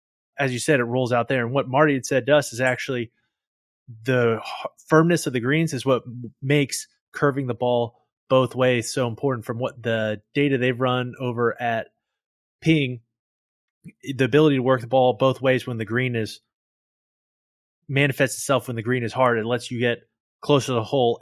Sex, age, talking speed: male, 30-49, 190 wpm